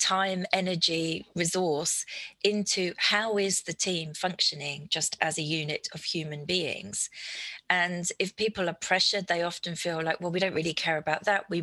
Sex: female